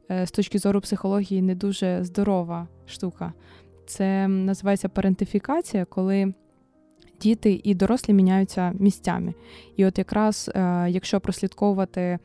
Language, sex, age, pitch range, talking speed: Ukrainian, female, 20-39, 180-205 Hz, 110 wpm